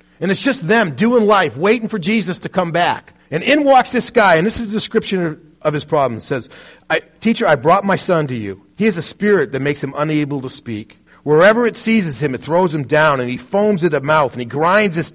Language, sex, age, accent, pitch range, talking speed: English, male, 40-59, American, 150-215 Hz, 250 wpm